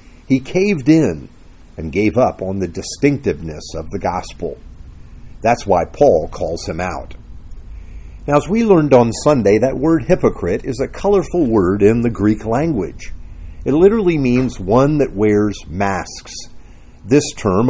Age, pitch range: 50-69, 95-150 Hz